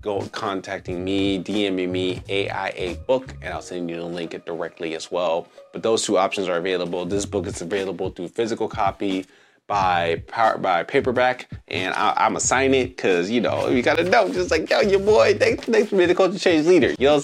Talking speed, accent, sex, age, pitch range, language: 205 wpm, American, male, 30-49, 90-115 Hz, English